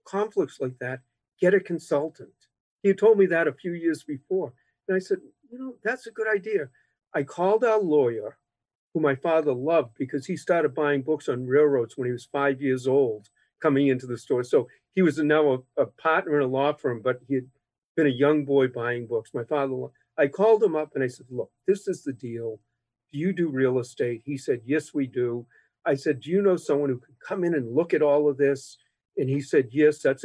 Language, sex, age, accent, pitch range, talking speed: English, male, 50-69, American, 135-190 Hz, 230 wpm